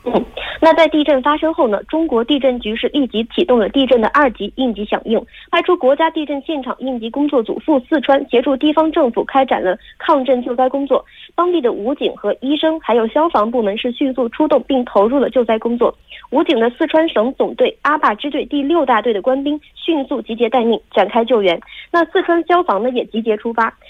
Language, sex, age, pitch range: Korean, female, 20-39, 230-300 Hz